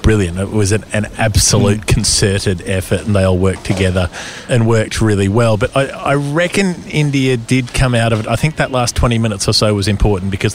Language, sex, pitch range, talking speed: English, male, 95-115 Hz, 215 wpm